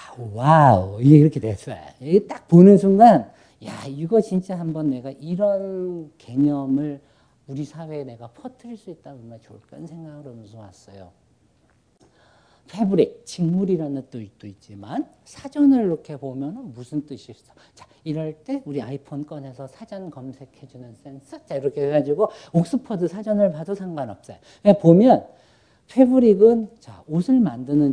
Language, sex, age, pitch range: Korean, male, 50-69, 135-180 Hz